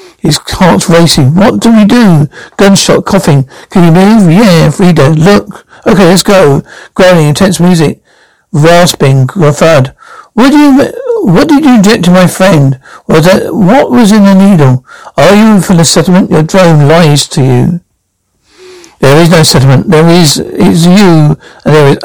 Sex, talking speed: male, 170 wpm